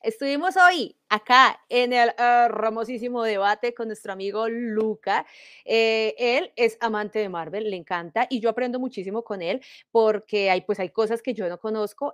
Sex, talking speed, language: female, 175 wpm, Spanish